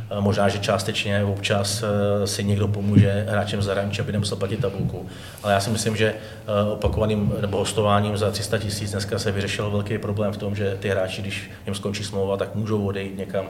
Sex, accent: male, native